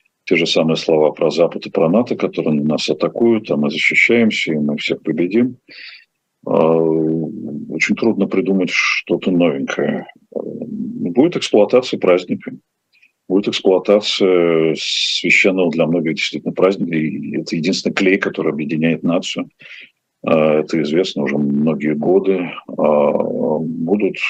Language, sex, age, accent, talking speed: Russian, male, 40-59, native, 115 wpm